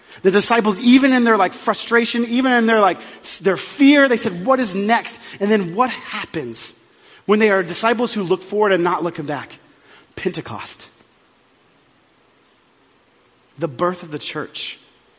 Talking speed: 155 wpm